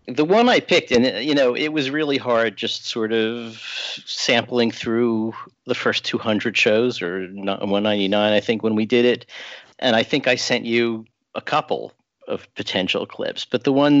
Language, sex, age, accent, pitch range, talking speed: English, male, 50-69, American, 95-120 Hz, 185 wpm